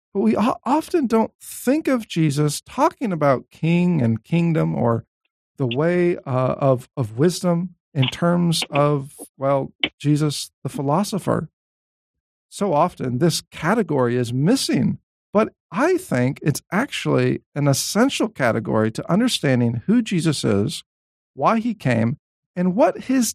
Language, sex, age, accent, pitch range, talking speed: English, male, 50-69, American, 130-190 Hz, 130 wpm